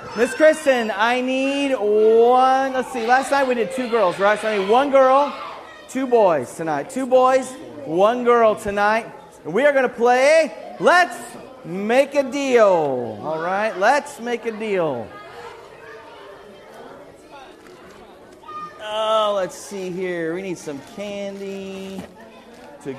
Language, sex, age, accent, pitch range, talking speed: English, male, 30-49, American, 200-255 Hz, 135 wpm